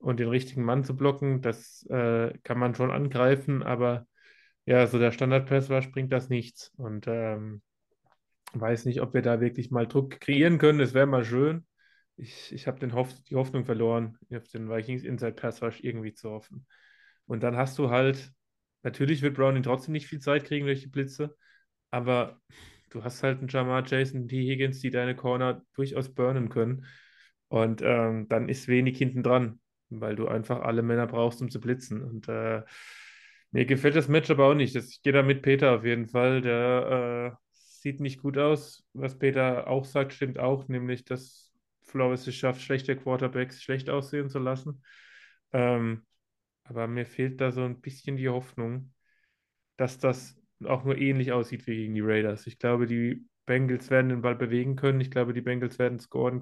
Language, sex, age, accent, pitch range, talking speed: German, male, 20-39, German, 120-135 Hz, 185 wpm